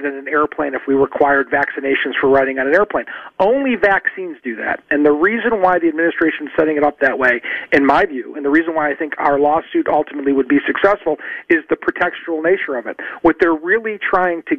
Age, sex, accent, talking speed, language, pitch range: 40-59, male, American, 220 wpm, English, 150-205 Hz